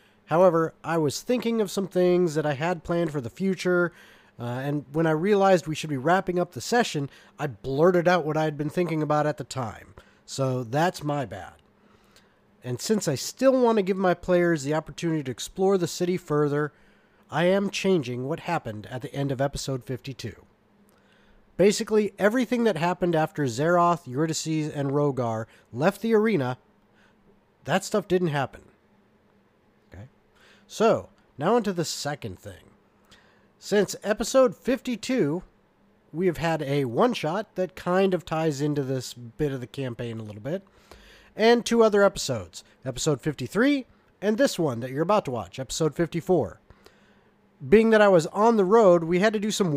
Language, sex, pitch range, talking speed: English, male, 135-190 Hz, 170 wpm